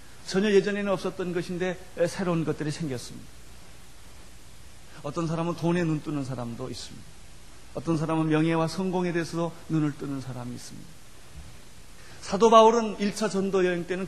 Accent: native